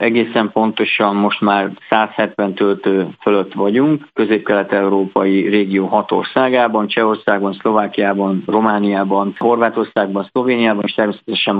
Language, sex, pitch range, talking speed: Hungarian, male, 100-115 Hz, 100 wpm